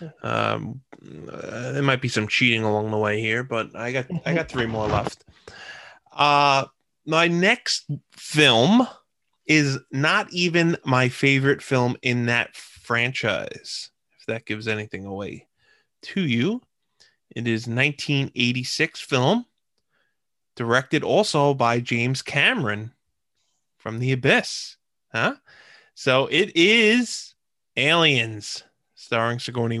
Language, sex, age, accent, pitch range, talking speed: English, male, 20-39, American, 110-140 Hz, 115 wpm